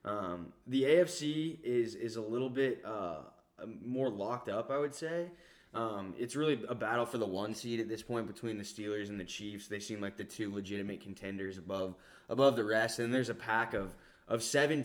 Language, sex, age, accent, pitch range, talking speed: English, male, 10-29, American, 95-115 Hz, 205 wpm